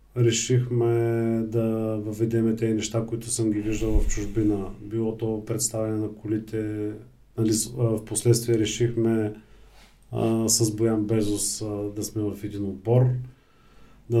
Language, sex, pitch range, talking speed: Bulgarian, male, 110-120 Hz, 125 wpm